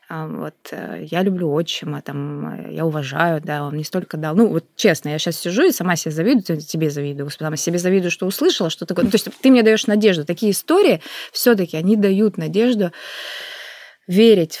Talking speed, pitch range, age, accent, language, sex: 185 wpm, 165-225 Hz, 20-39, native, Russian, female